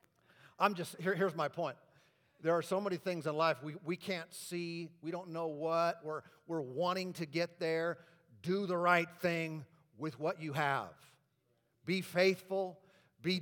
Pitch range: 165-200 Hz